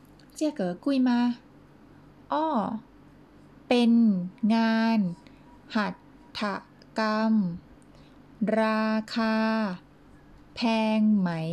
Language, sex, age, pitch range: Chinese, female, 20-39, 195-250 Hz